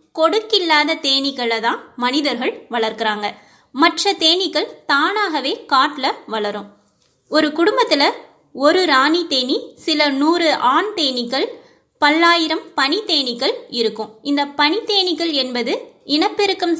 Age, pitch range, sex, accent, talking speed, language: 20-39, 250-370 Hz, female, native, 100 wpm, Tamil